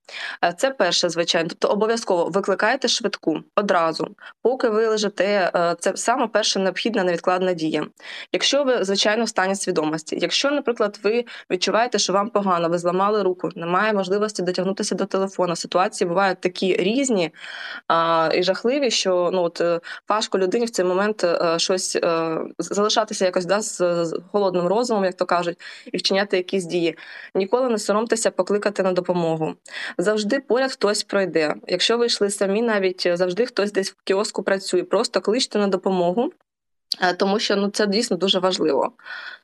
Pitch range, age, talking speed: 180-210 Hz, 20-39, 145 wpm